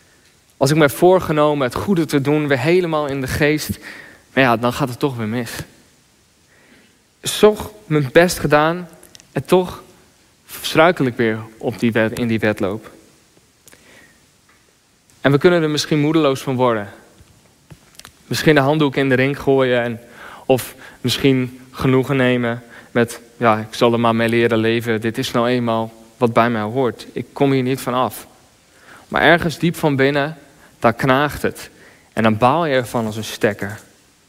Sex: male